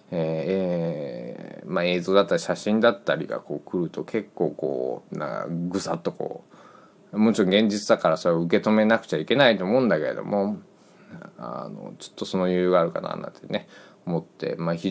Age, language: 20-39, Japanese